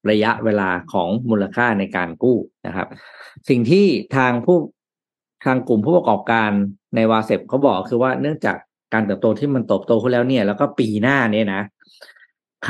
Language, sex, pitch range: Thai, male, 100-130 Hz